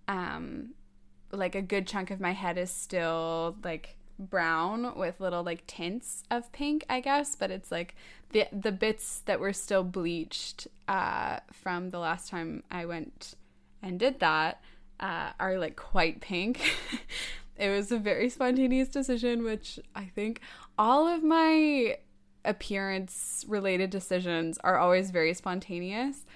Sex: female